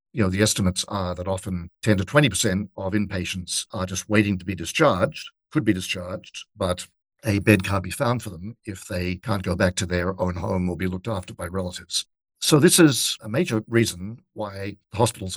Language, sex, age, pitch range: English, male, 60-79, 95-115 Hz